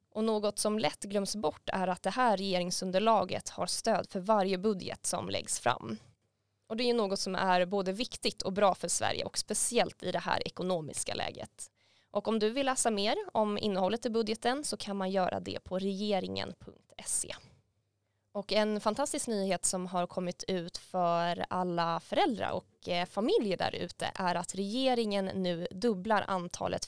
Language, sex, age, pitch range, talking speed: Swedish, female, 20-39, 175-215 Hz, 170 wpm